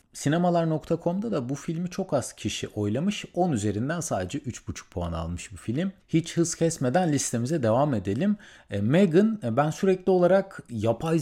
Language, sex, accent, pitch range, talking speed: Turkish, male, native, 110-180 Hz, 150 wpm